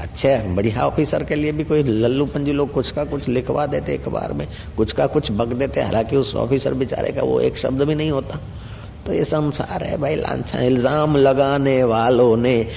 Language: Hindi